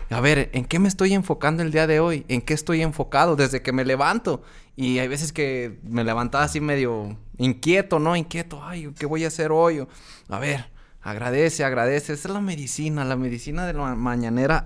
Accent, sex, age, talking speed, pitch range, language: Mexican, male, 20-39, 200 wpm, 130-165 Hz, Spanish